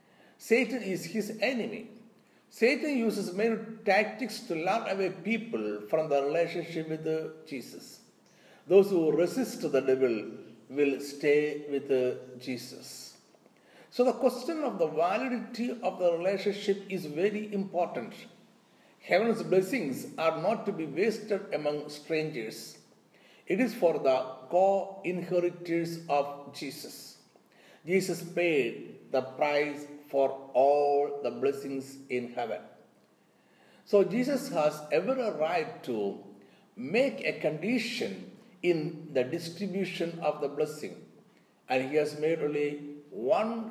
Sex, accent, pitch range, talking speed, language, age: male, native, 140-215 Hz, 120 wpm, Malayalam, 60-79